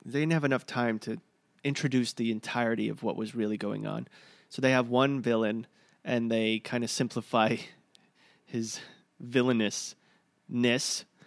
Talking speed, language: 145 wpm, English